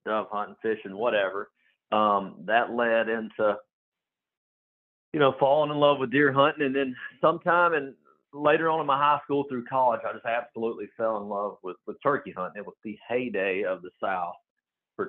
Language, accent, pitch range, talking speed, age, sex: English, American, 105-140 Hz, 185 wpm, 50-69, male